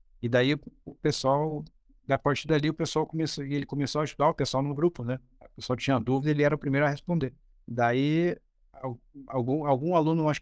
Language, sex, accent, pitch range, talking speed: Portuguese, male, Brazilian, 120-145 Hz, 195 wpm